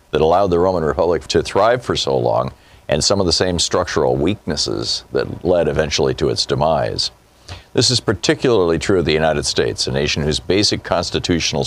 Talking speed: 185 wpm